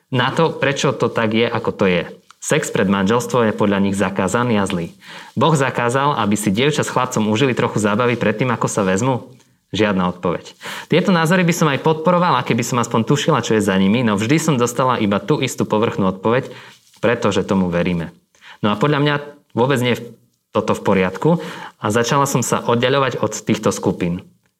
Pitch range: 105-140 Hz